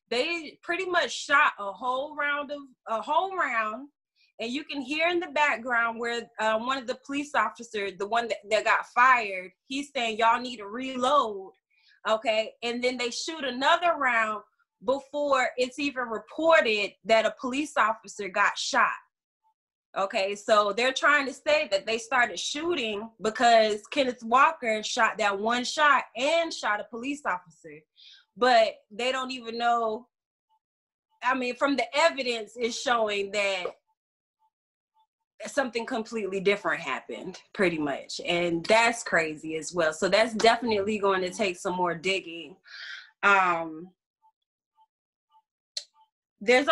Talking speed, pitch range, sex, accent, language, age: 145 wpm, 210-280 Hz, female, American, English, 20-39